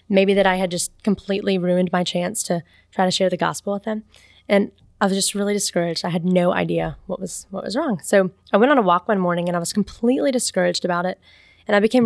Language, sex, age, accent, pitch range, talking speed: English, female, 20-39, American, 185-245 Hz, 250 wpm